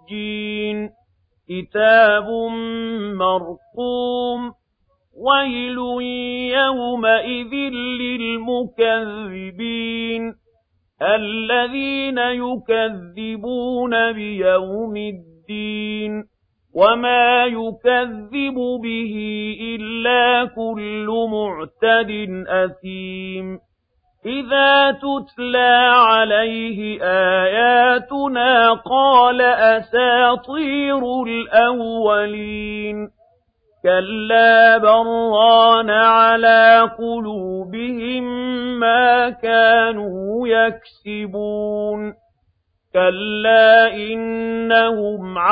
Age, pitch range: 50-69, 205-240 Hz